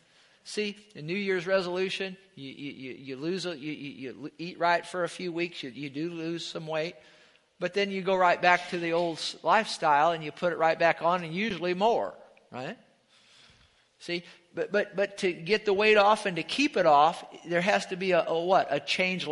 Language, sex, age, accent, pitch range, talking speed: English, male, 50-69, American, 170-210 Hz, 210 wpm